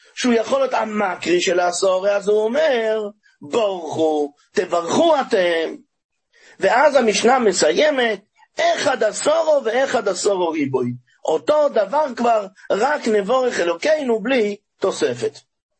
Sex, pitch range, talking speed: male, 210-280 Hz, 105 wpm